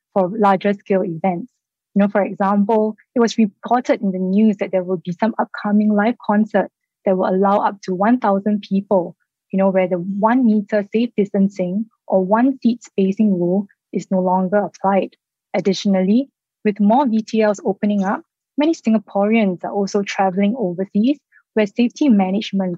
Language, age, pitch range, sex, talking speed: English, 20-39, 190-225 Hz, female, 145 wpm